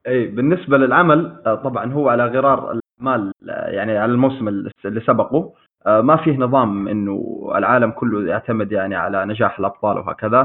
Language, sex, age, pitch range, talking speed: Arabic, male, 20-39, 110-140 Hz, 145 wpm